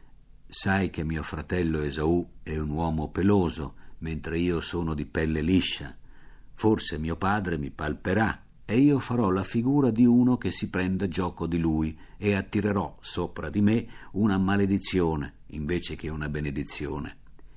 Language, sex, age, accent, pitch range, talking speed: Italian, male, 50-69, native, 80-110 Hz, 150 wpm